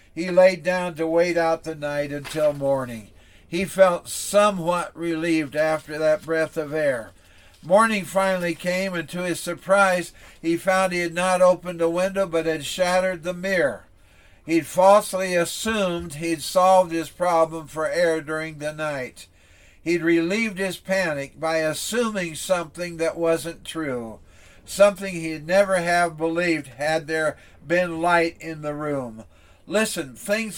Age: 60-79